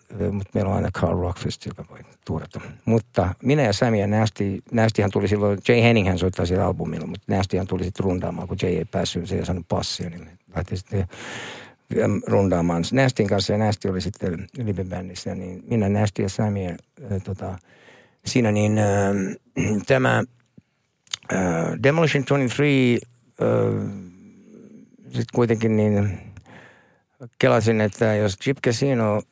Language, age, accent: Finnish, 60-79, native